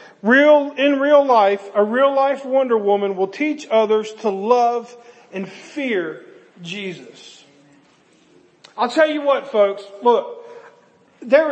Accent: American